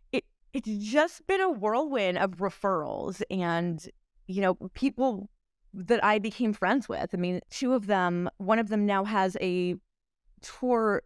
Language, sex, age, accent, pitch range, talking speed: English, female, 20-39, American, 175-210 Hz, 150 wpm